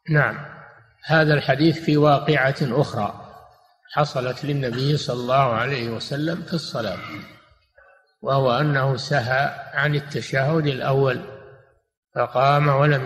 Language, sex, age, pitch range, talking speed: Arabic, male, 60-79, 125-150 Hz, 100 wpm